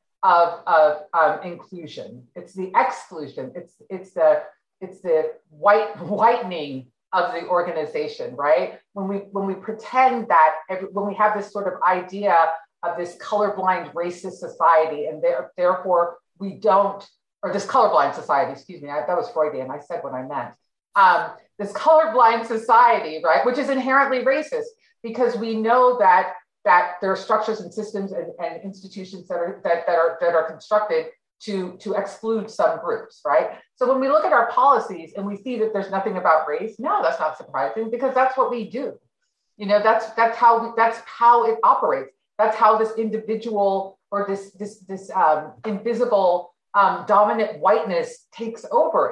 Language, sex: English, female